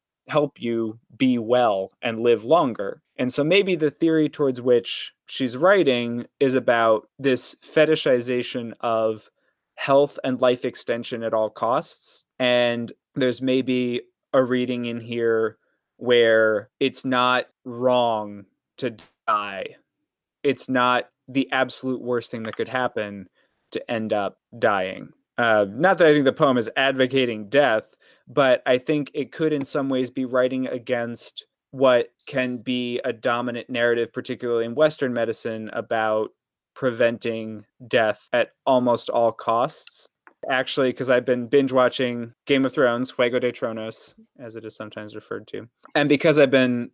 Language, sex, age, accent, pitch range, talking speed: English, male, 20-39, American, 120-135 Hz, 145 wpm